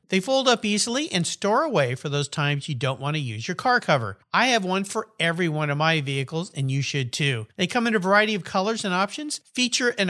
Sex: male